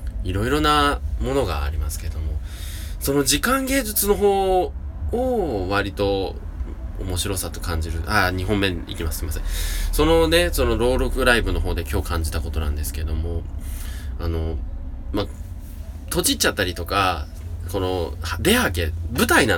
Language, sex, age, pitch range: Japanese, male, 20-39, 75-105 Hz